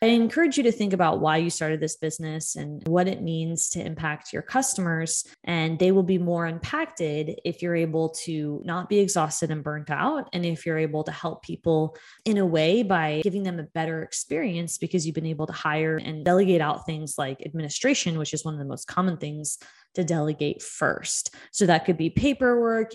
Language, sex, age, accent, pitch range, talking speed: English, female, 20-39, American, 155-185 Hz, 205 wpm